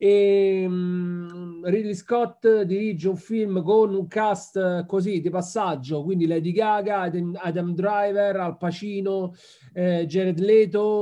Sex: male